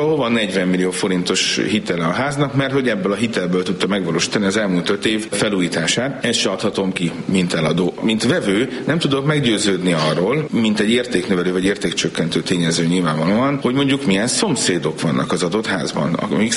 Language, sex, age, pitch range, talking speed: Hungarian, male, 40-59, 90-125 Hz, 175 wpm